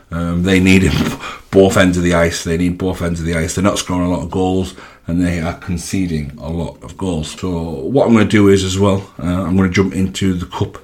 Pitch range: 85-100 Hz